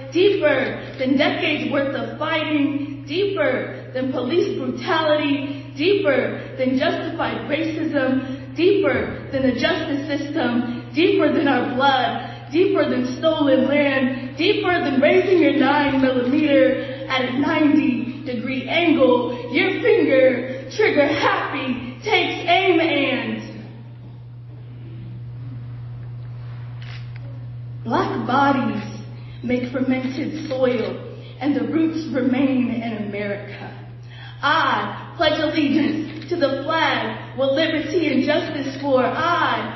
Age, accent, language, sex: 20-39, American, English, female